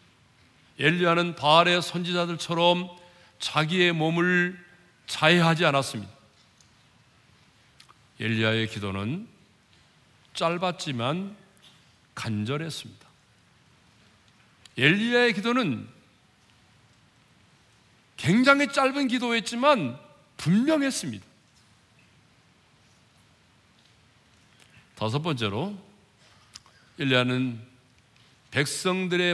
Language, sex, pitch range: Korean, male, 115-175 Hz